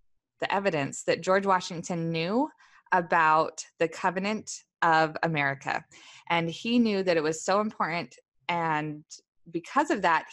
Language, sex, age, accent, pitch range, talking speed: English, female, 20-39, American, 160-200 Hz, 135 wpm